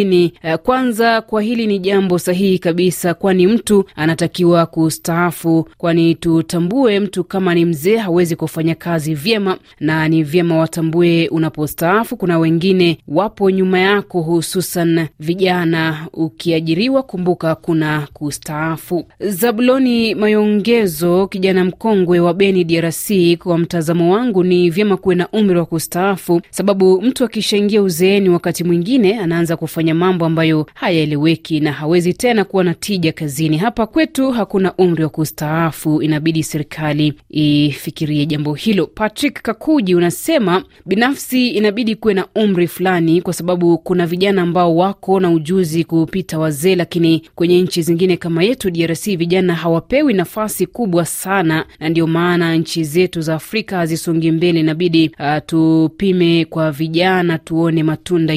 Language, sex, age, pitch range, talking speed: Swahili, female, 30-49, 160-195 Hz, 135 wpm